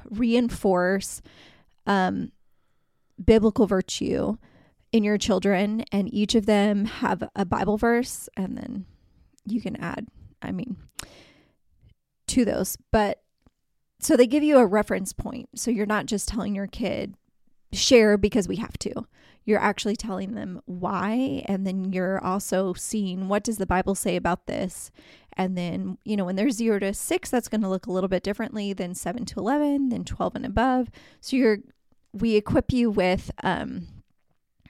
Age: 20-39